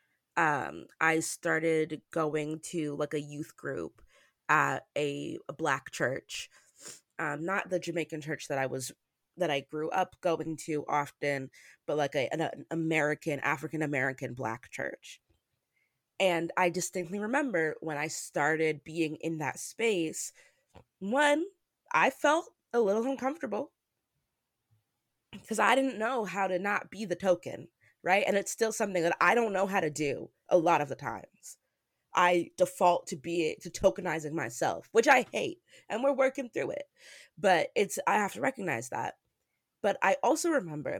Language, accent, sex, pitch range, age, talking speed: English, American, female, 155-210 Hz, 20-39, 155 wpm